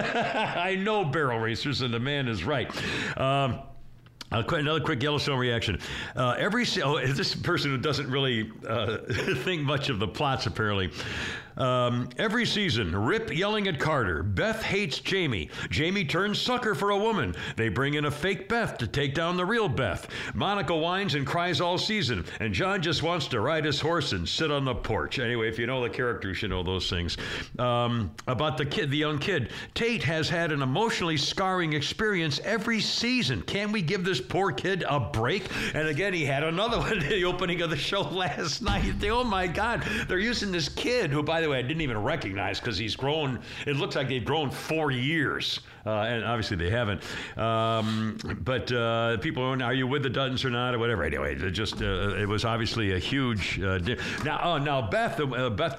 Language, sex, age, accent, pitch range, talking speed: English, male, 60-79, American, 110-165 Hz, 200 wpm